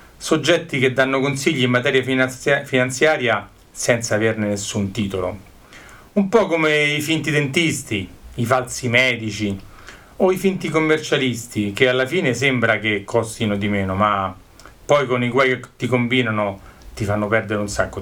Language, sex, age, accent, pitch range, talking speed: Italian, male, 40-59, native, 105-135 Hz, 150 wpm